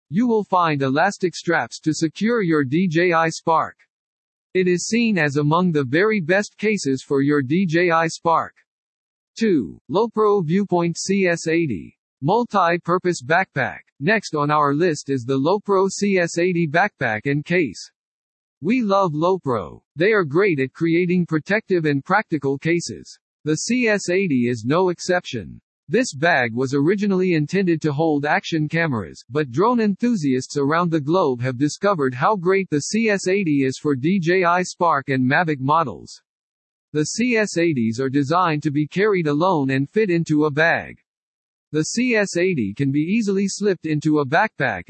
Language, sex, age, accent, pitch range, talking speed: English, male, 50-69, American, 145-190 Hz, 145 wpm